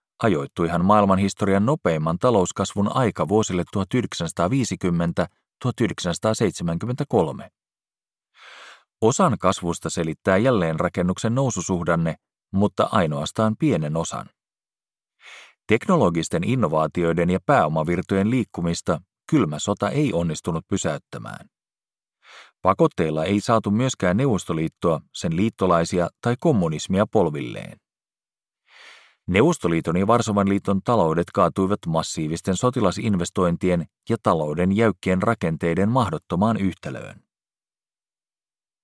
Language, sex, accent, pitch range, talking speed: Finnish, male, native, 85-110 Hz, 80 wpm